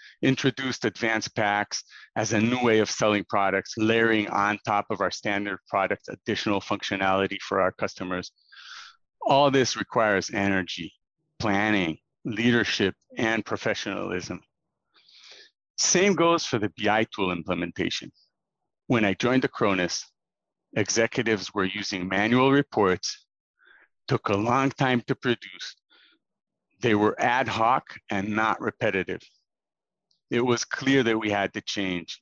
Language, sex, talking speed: English, male, 125 wpm